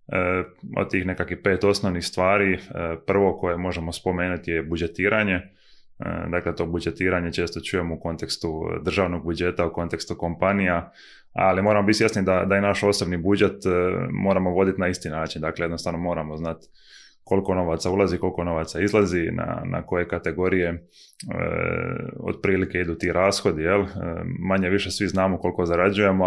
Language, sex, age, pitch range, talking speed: Croatian, male, 20-39, 85-95 Hz, 150 wpm